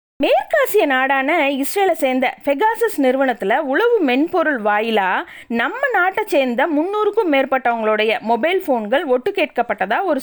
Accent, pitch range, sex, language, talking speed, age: native, 245-360 Hz, female, Tamil, 110 wpm, 20-39